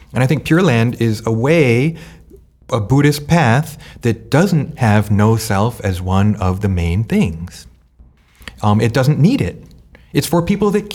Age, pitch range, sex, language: 30-49, 90-135 Hz, male, English